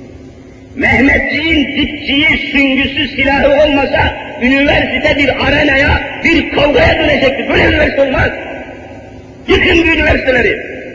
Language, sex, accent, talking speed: Turkish, male, native, 95 wpm